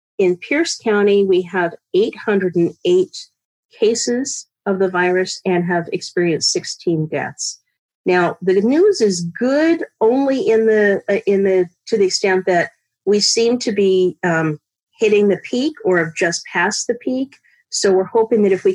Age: 40-59